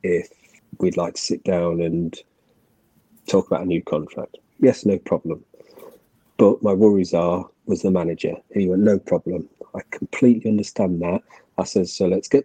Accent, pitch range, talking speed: British, 90-105 Hz, 170 wpm